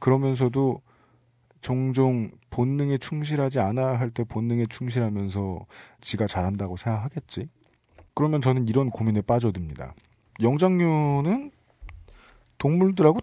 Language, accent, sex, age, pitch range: Korean, native, male, 40-59, 105-140 Hz